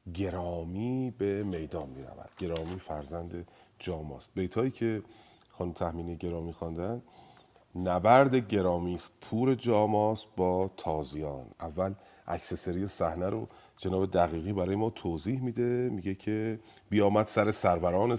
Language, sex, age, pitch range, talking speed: Persian, male, 40-59, 90-120 Hz, 115 wpm